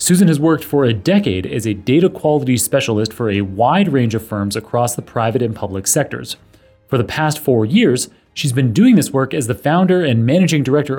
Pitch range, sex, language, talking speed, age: 110-160 Hz, male, English, 215 wpm, 30-49